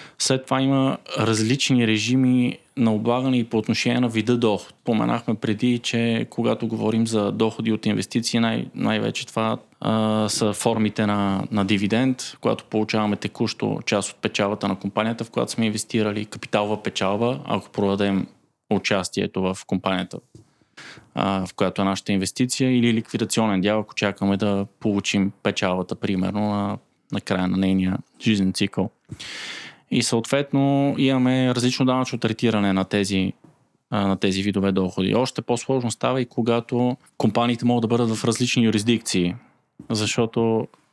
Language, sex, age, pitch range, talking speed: Bulgarian, male, 20-39, 100-120 Hz, 140 wpm